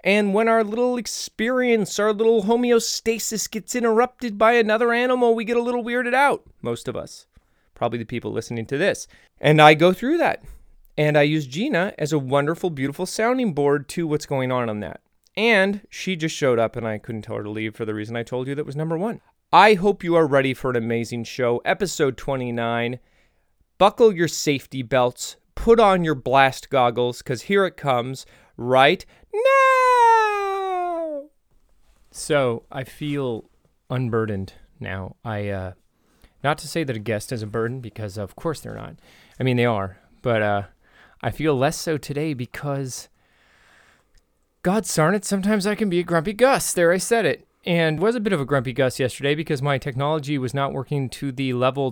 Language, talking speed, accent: English, 185 wpm, American